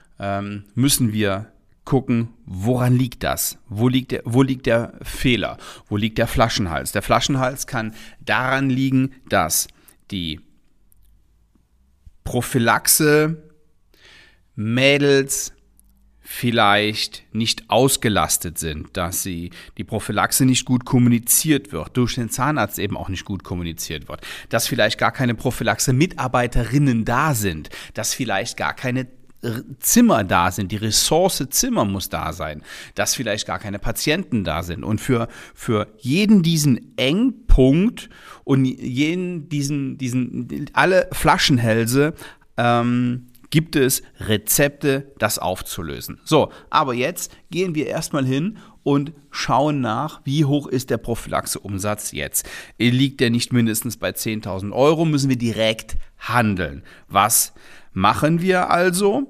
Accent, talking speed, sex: German, 125 wpm, male